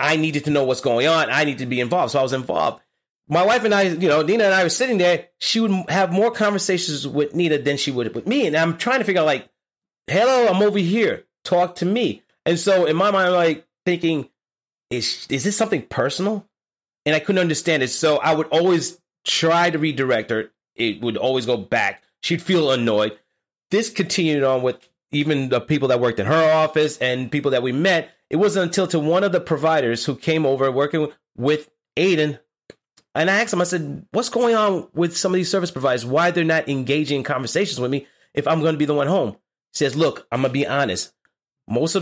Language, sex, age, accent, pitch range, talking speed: English, male, 30-49, American, 130-180 Hz, 230 wpm